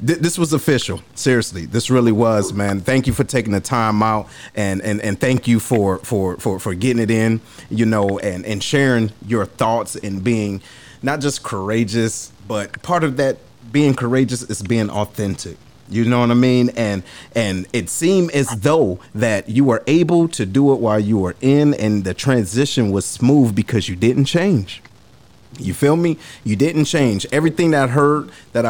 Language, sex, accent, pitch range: English, male, American, 100-130 Hz